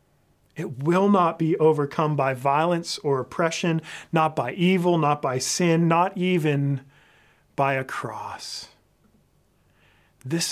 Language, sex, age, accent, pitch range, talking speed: English, male, 40-59, American, 125-150 Hz, 120 wpm